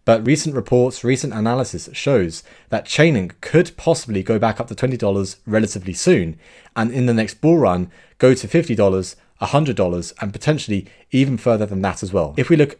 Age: 30-49